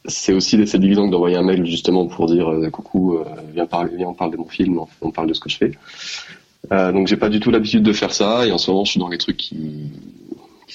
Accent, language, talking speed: French, French, 280 wpm